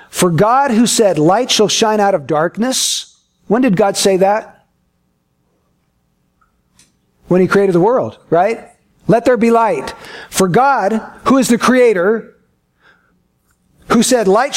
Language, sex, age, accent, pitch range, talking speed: English, male, 50-69, American, 185-245 Hz, 140 wpm